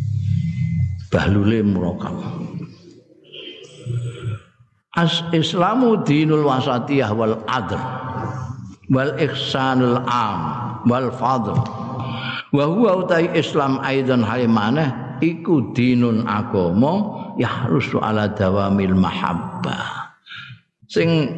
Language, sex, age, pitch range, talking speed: Indonesian, male, 50-69, 110-140 Hz, 75 wpm